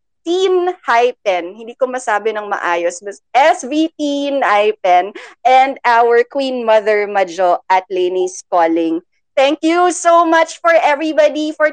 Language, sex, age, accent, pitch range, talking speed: Filipino, female, 20-39, native, 240-310 Hz, 120 wpm